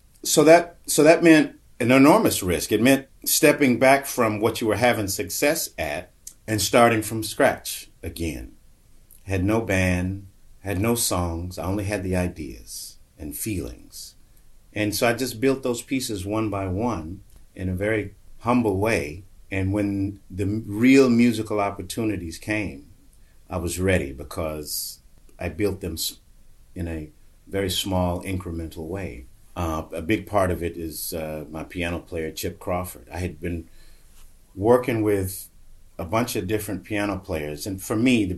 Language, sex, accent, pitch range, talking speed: English, male, American, 85-110 Hz, 155 wpm